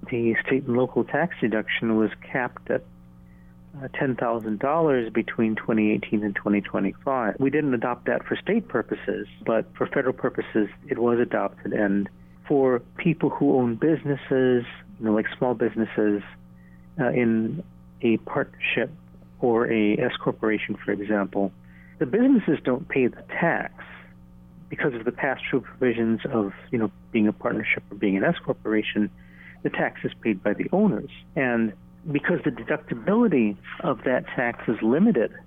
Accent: American